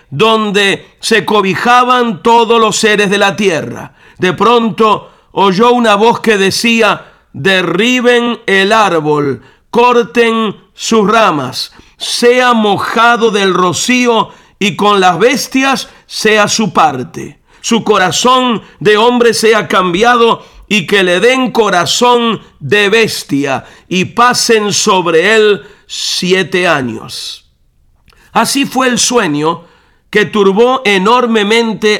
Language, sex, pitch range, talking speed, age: Spanish, male, 190-230 Hz, 110 wpm, 50-69